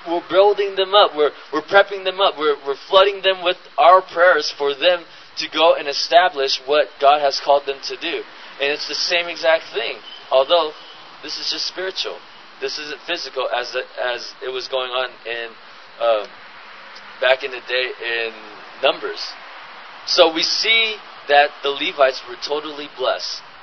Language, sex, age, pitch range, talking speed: English, male, 20-39, 135-195 Hz, 170 wpm